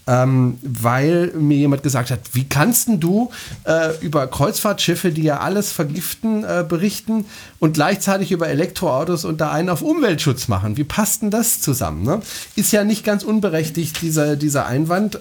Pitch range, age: 125-170 Hz, 40-59